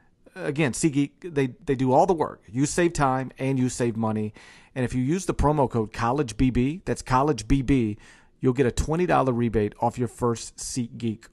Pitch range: 110-135 Hz